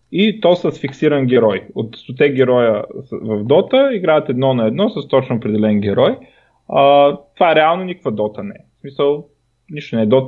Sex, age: male, 20-39